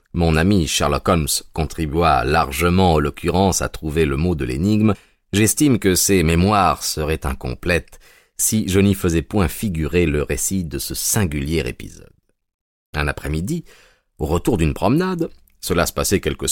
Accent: French